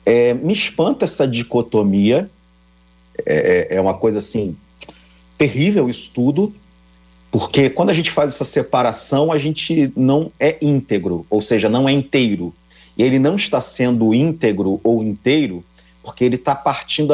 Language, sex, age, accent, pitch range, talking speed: Portuguese, male, 40-59, Brazilian, 95-145 Hz, 145 wpm